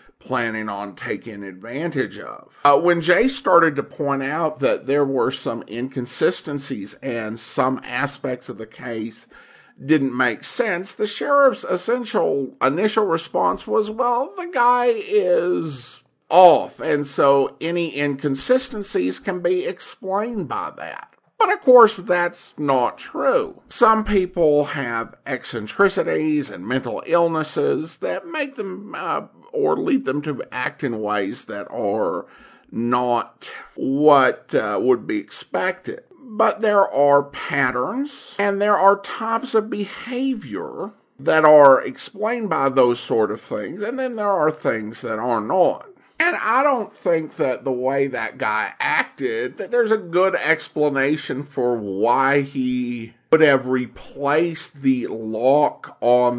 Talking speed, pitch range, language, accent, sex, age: 135 wpm, 130-215 Hz, English, American, male, 50-69